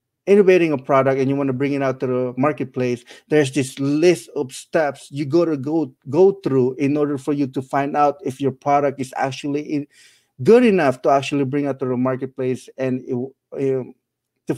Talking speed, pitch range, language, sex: 195 wpm, 130-155 Hz, English, male